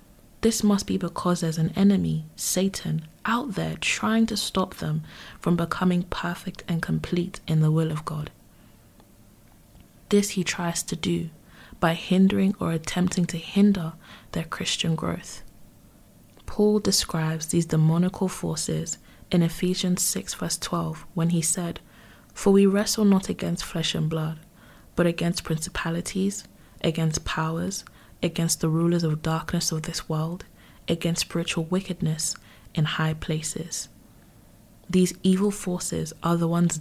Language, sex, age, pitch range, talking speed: English, female, 20-39, 160-185 Hz, 135 wpm